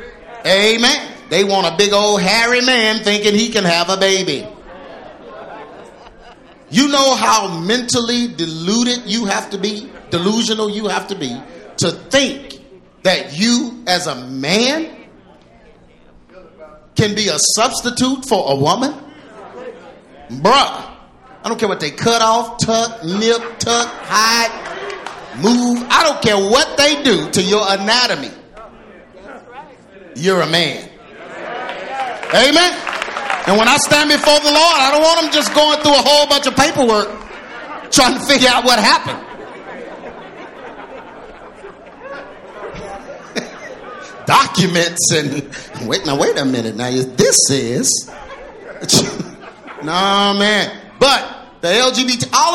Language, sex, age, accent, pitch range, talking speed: English, male, 40-59, American, 190-265 Hz, 125 wpm